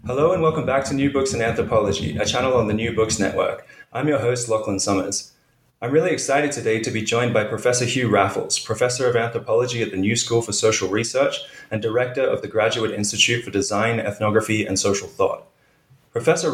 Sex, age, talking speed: male, 20-39, 200 wpm